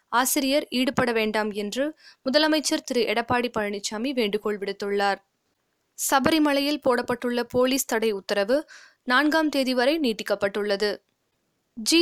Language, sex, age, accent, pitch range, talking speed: Tamil, female, 20-39, native, 220-275 Hz, 100 wpm